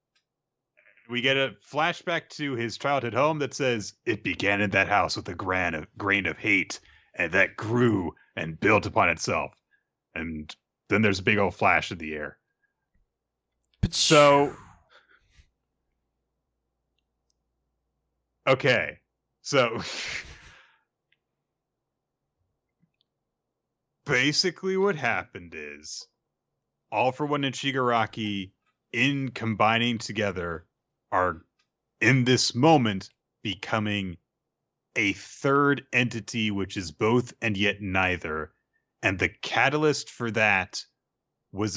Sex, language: male, English